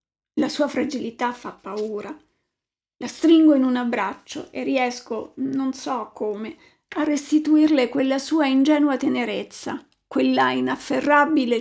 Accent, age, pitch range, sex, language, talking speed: native, 40-59, 250-305 Hz, female, Italian, 120 wpm